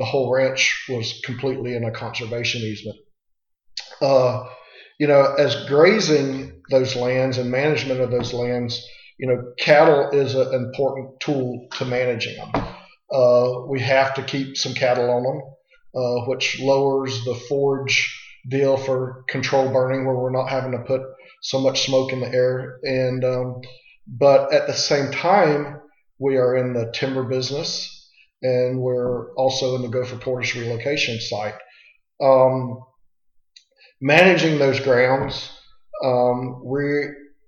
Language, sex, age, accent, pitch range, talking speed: English, male, 40-59, American, 125-145 Hz, 140 wpm